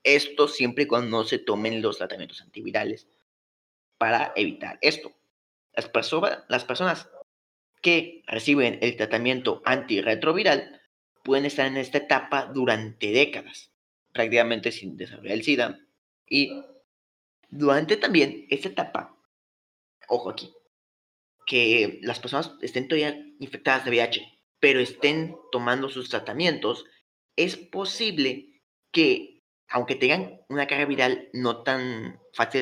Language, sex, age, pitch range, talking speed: Spanish, male, 30-49, 120-150 Hz, 120 wpm